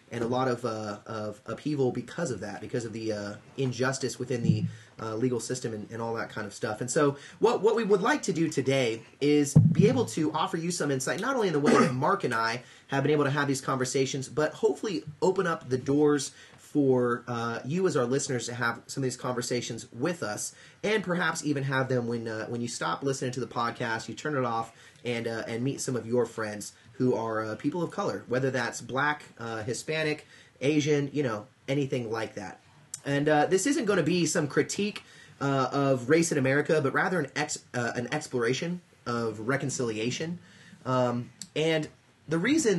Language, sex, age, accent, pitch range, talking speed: English, male, 30-49, American, 120-150 Hz, 210 wpm